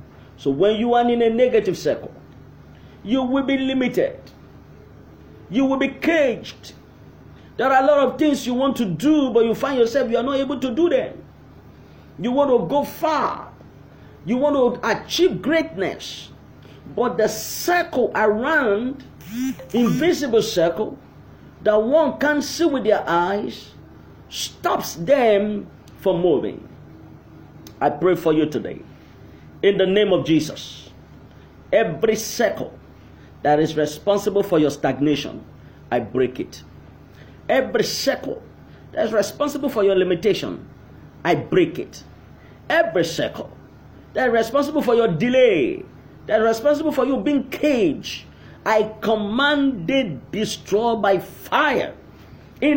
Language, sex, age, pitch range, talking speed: English, male, 50-69, 200-280 Hz, 135 wpm